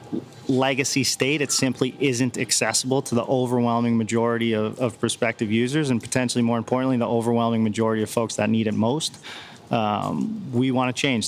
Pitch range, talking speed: 115-130 Hz, 170 wpm